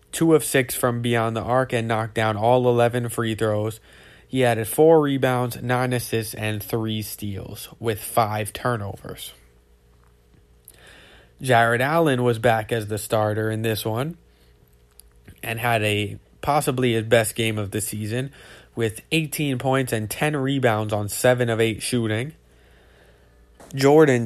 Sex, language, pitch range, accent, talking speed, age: male, English, 110-130 Hz, American, 145 wpm, 20-39